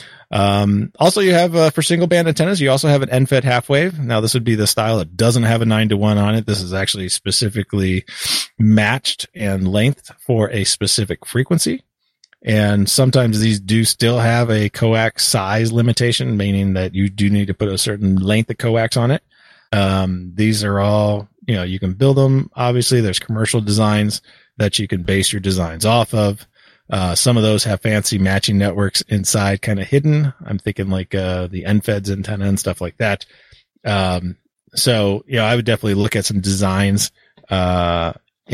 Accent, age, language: American, 30-49, English